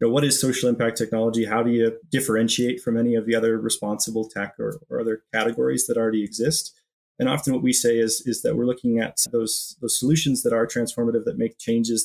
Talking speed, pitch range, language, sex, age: 225 wpm, 115-130 Hz, English, male, 30-49